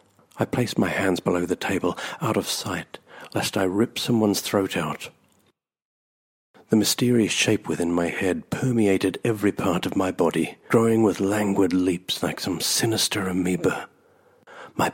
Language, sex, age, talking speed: English, male, 60-79, 150 wpm